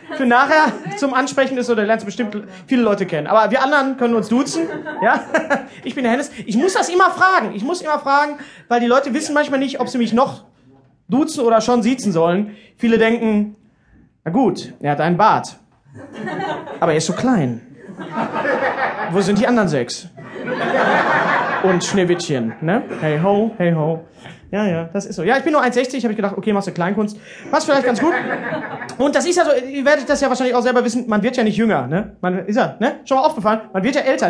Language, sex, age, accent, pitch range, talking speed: German, male, 30-49, German, 205-280 Hz, 210 wpm